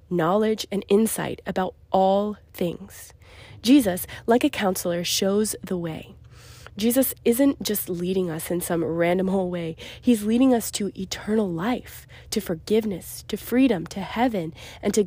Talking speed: 145 wpm